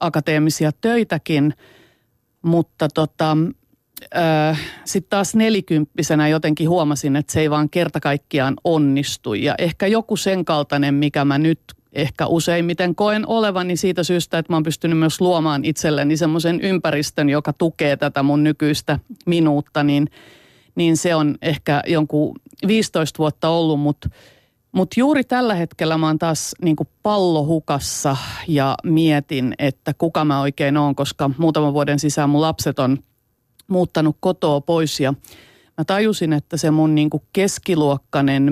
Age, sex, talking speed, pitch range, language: 30-49, female, 140 wpm, 140-170 Hz, Finnish